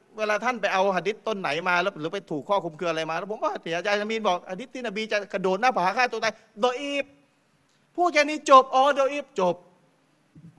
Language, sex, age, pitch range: Thai, male, 30-49, 160-220 Hz